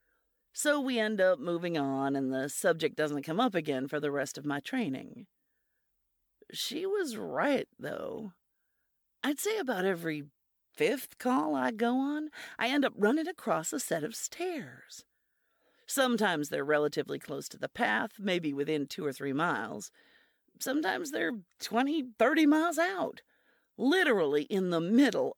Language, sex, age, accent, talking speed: English, female, 50-69, American, 150 wpm